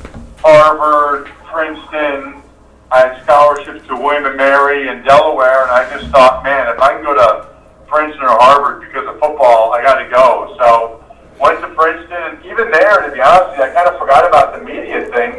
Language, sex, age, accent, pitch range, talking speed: English, male, 50-69, American, 130-155 Hz, 185 wpm